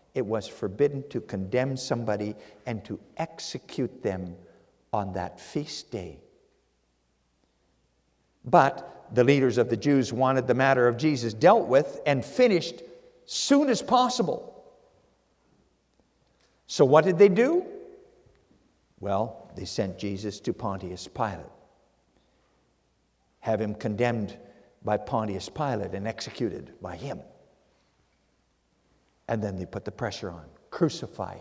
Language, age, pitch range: English, 50-69, 100-140 Hz